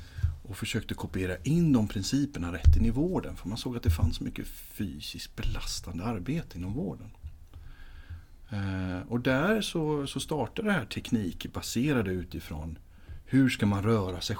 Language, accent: Swedish, native